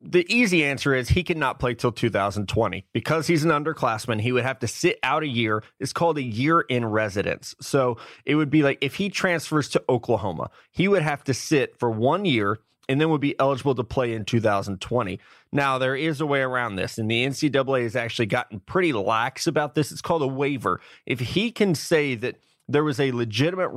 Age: 30-49